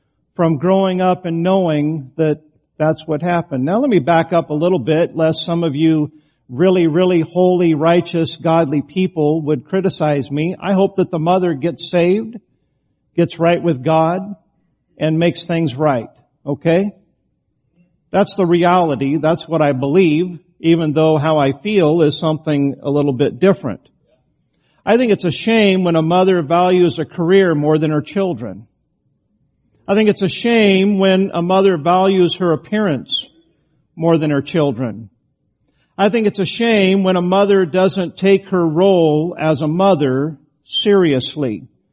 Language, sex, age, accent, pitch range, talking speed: English, male, 50-69, American, 155-190 Hz, 155 wpm